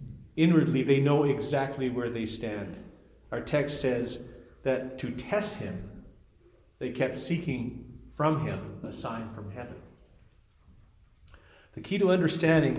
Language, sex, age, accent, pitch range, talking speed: English, male, 50-69, American, 110-145 Hz, 125 wpm